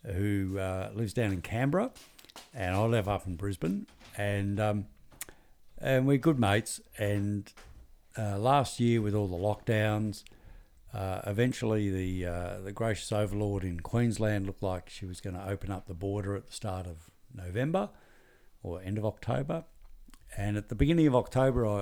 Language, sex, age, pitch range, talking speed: English, male, 60-79, 95-125 Hz, 165 wpm